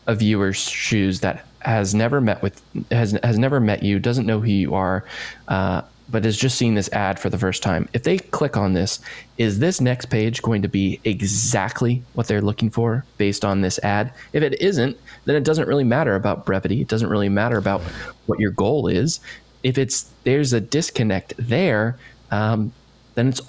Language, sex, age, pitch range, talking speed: English, male, 20-39, 100-120 Hz, 200 wpm